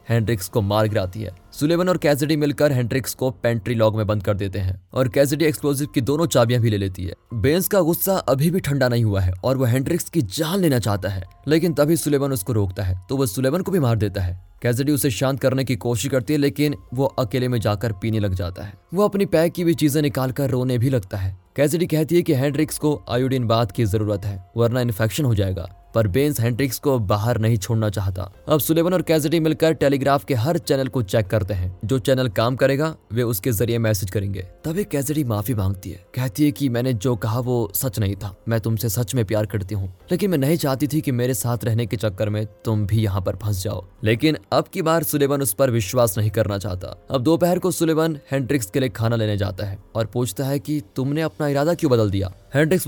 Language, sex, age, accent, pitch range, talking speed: Hindi, male, 20-39, native, 110-145 Hz, 190 wpm